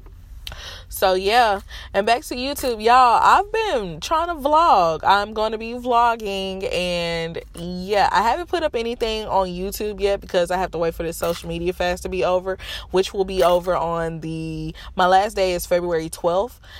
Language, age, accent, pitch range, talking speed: English, 20-39, American, 155-190 Hz, 185 wpm